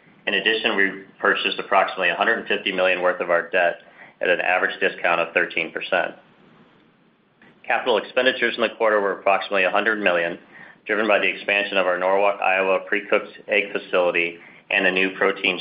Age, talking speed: 40-59, 160 wpm